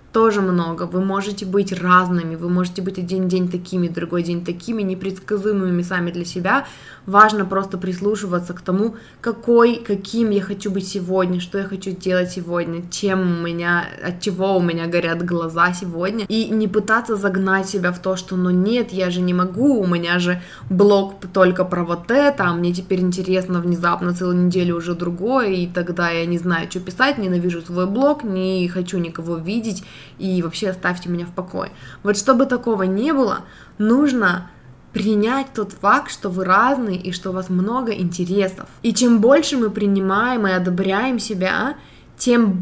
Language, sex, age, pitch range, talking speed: Russian, female, 20-39, 180-215 Hz, 175 wpm